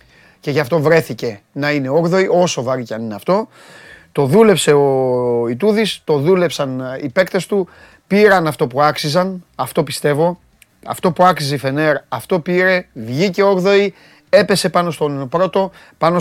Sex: male